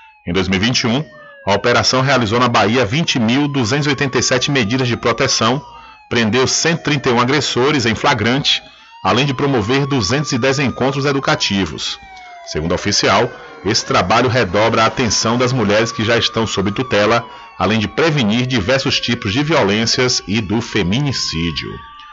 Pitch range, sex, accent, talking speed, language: 110-140 Hz, male, Brazilian, 125 wpm, Portuguese